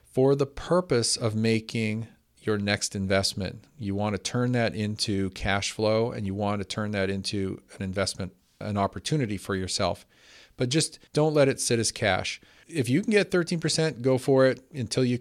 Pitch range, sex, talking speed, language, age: 100-120 Hz, male, 185 wpm, English, 40-59